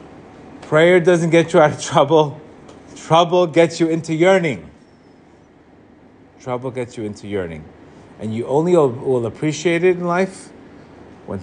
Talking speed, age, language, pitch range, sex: 135 wpm, 30-49, English, 125-185 Hz, male